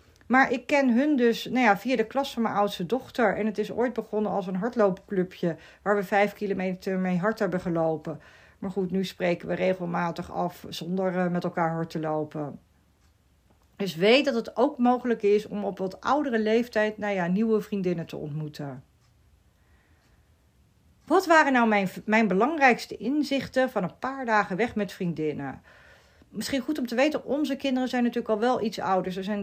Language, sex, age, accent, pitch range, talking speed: Dutch, female, 40-59, Dutch, 180-235 Hz, 175 wpm